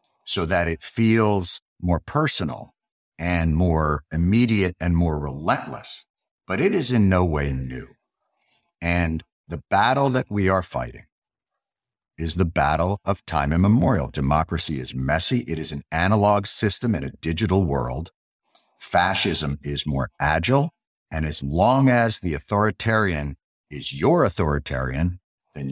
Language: English